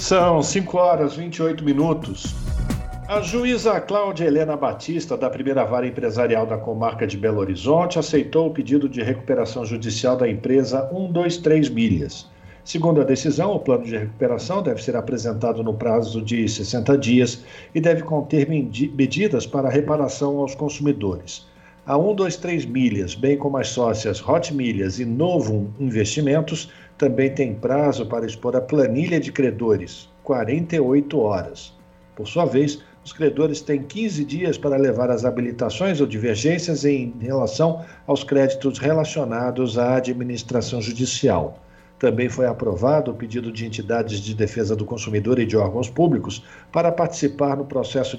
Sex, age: male, 50-69